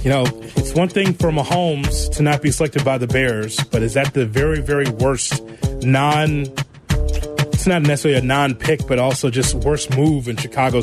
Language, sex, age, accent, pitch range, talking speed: English, male, 30-49, American, 115-150 Hz, 195 wpm